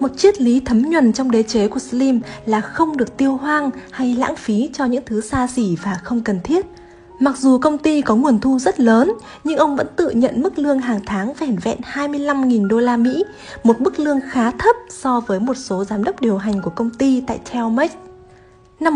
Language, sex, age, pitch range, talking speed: Vietnamese, female, 20-39, 220-295 Hz, 220 wpm